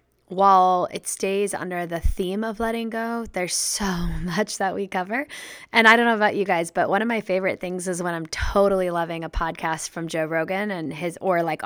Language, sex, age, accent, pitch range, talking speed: English, female, 10-29, American, 185-225 Hz, 215 wpm